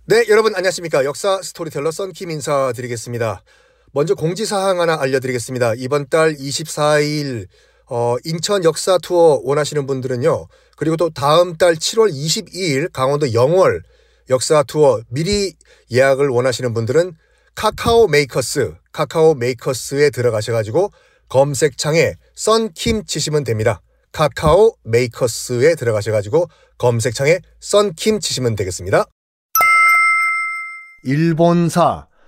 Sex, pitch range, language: male, 135-210 Hz, Korean